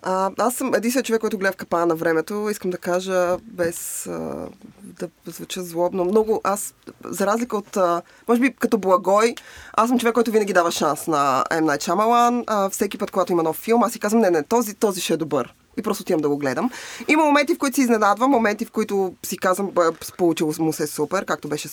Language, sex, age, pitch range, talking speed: Bulgarian, female, 20-39, 175-225 Hz, 215 wpm